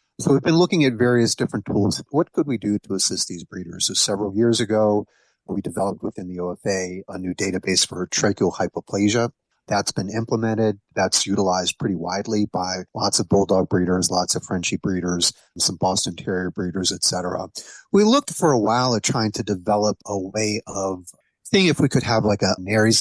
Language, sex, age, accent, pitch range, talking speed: English, male, 30-49, American, 95-110 Hz, 190 wpm